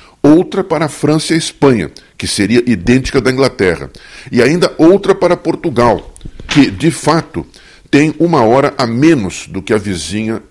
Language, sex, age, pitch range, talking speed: Portuguese, male, 50-69, 100-140 Hz, 165 wpm